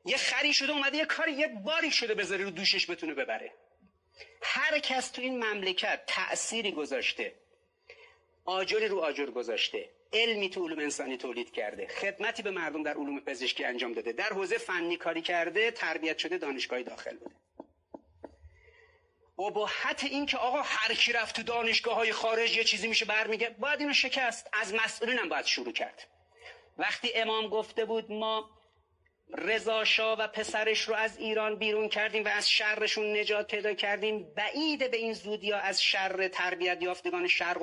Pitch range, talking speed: 200-275 Hz, 155 wpm